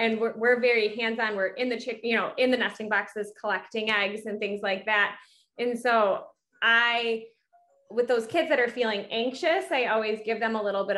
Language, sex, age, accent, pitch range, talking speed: English, female, 20-39, American, 205-245 Hz, 210 wpm